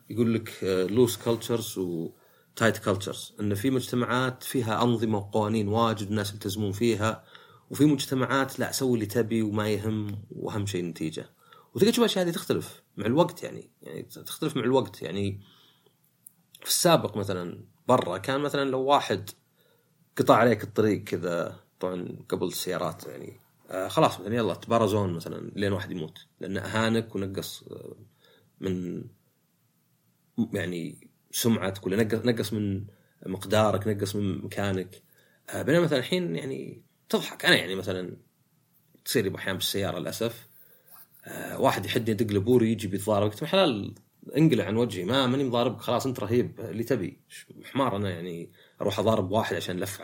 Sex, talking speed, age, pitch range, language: male, 140 wpm, 30-49, 100-130 Hz, Arabic